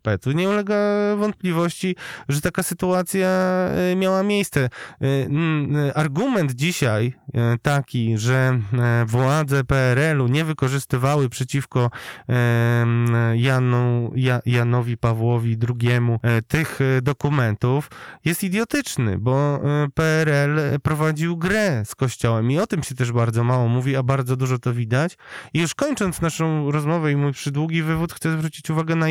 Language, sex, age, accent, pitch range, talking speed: Polish, male, 20-39, native, 130-170 Hz, 115 wpm